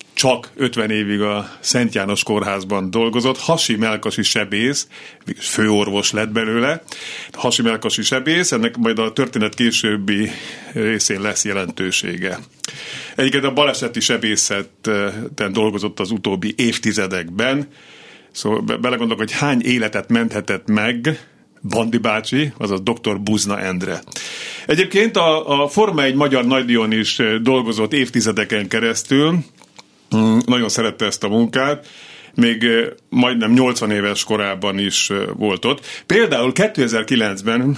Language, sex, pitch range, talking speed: Hungarian, male, 105-125 Hz, 110 wpm